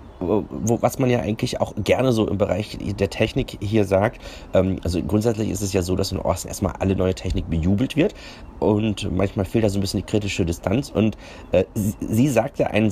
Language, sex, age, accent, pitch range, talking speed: German, male, 30-49, German, 90-110 Hz, 195 wpm